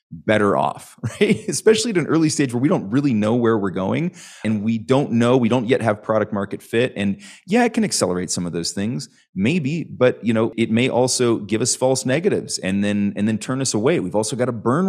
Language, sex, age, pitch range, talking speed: English, male, 30-49, 105-140 Hz, 240 wpm